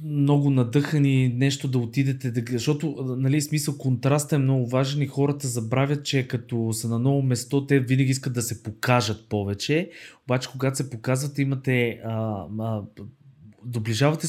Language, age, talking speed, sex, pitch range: Bulgarian, 20-39, 145 wpm, male, 115-140 Hz